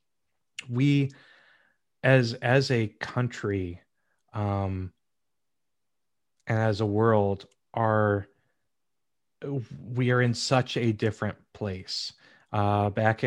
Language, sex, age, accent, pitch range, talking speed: English, male, 30-49, American, 110-130 Hz, 90 wpm